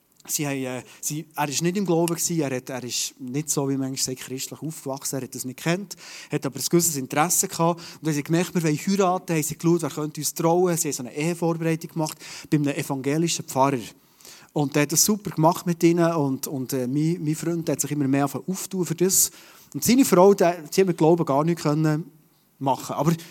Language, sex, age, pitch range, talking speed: German, male, 30-49, 150-195 Hz, 230 wpm